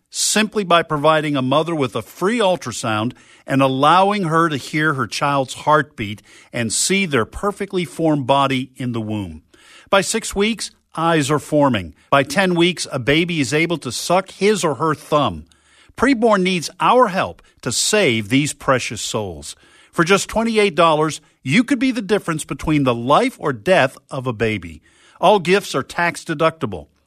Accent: American